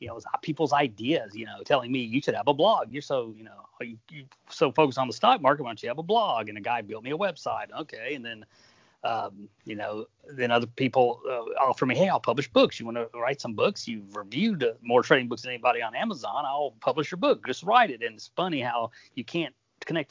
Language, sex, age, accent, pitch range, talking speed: English, male, 30-49, American, 110-130 Hz, 255 wpm